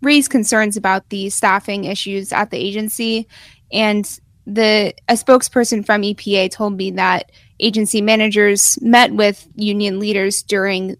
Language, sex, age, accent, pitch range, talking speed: English, female, 10-29, American, 195-225 Hz, 135 wpm